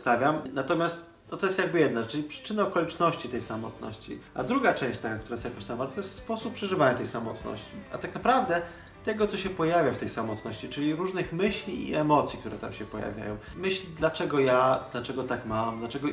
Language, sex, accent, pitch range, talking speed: Polish, male, native, 115-150 Hz, 195 wpm